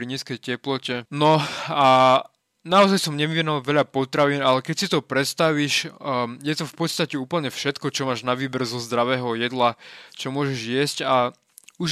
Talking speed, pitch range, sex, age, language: 170 wpm, 125-155 Hz, male, 20-39, Slovak